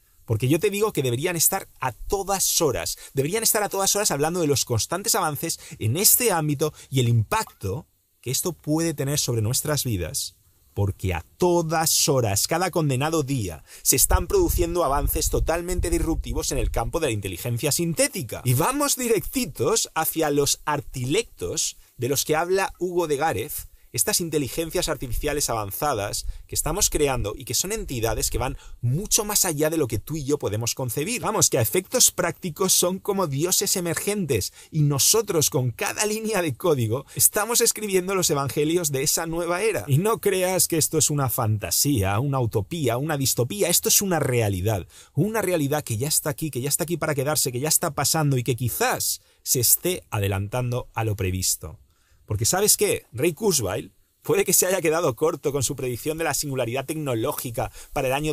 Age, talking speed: 30-49, 180 wpm